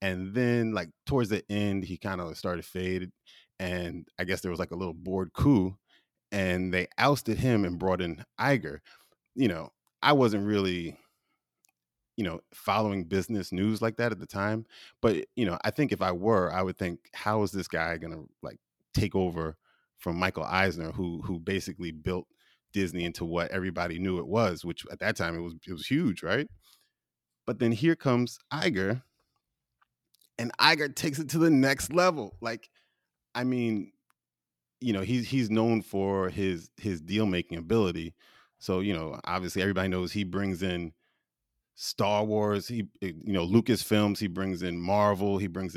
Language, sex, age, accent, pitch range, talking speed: English, male, 30-49, American, 90-110 Hz, 180 wpm